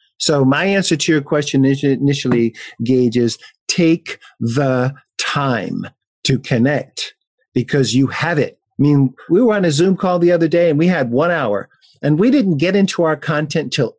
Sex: male